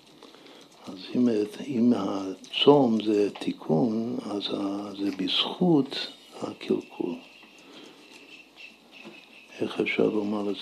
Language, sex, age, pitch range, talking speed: Hebrew, male, 60-79, 95-110 Hz, 75 wpm